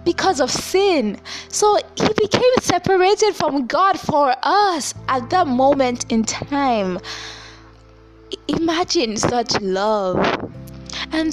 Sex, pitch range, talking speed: female, 210-320 Hz, 105 wpm